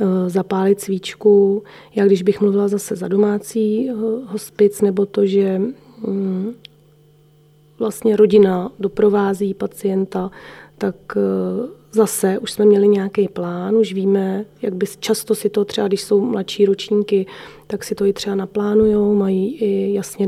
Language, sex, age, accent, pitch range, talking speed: Czech, female, 20-39, native, 185-210 Hz, 135 wpm